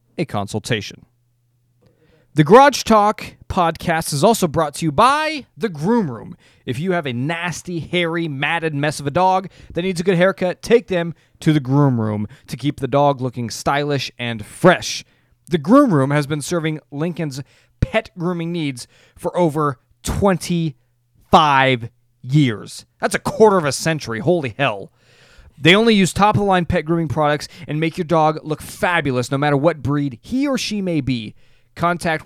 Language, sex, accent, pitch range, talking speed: English, male, American, 120-170 Hz, 165 wpm